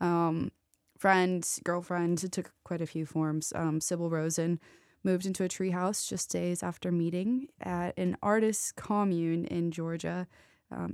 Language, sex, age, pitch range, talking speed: English, female, 20-39, 165-195 Hz, 145 wpm